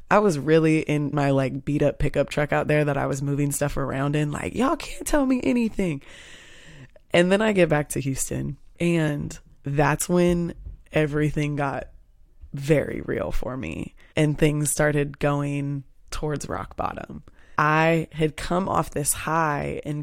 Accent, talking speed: American, 165 wpm